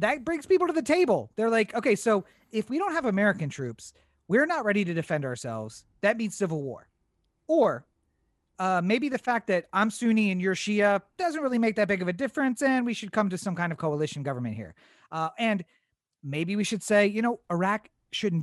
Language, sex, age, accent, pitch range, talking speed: English, male, 30-49, American, 160-220 Hz, 215 wpm